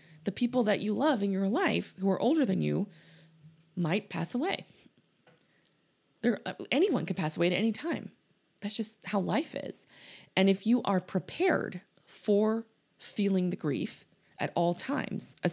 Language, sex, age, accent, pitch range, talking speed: English, female, 20-39, American, 155-200 Hz, 160 wpm